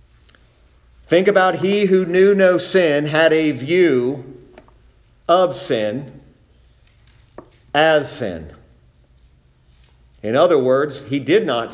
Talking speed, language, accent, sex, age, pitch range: 100 wpm, English, American, male, 50-69, 120-185 Hz